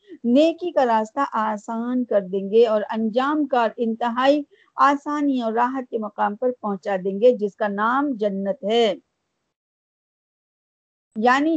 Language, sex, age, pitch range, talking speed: Urdu, female, 50-69, 225-280 Hz, 135 wpm